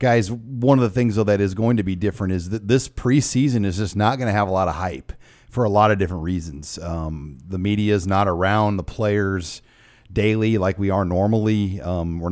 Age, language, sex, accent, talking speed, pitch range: 40-59, English, male, American, 230 wpm, 95-115 Hz